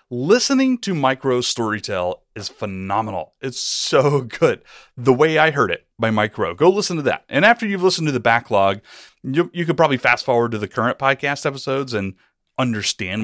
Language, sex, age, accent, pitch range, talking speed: English, male, 30-49, American, 110-170 Hz, 180 wpm